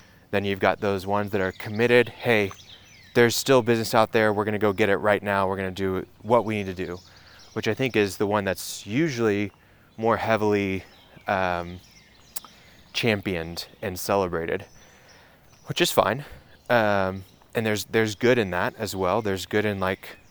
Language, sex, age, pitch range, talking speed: English, male, 20-39, 95-110 Hz, 175 wpm